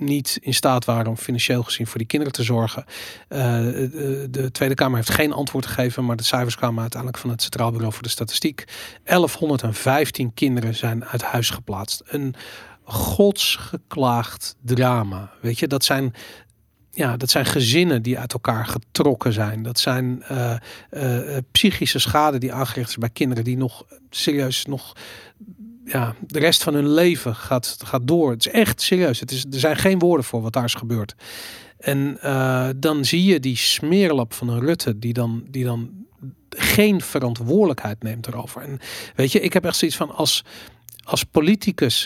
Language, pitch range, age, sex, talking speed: Dutch, 120-150 Hz, 40-59, male, 175 wpm